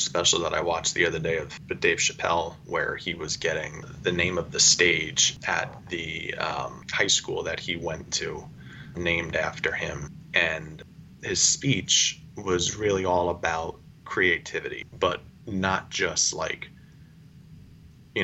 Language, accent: English, American